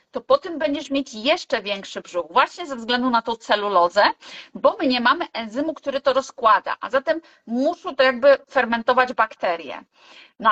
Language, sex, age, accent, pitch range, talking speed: Polish, female, 30-49, native, 220-265 Hz, 170 wpm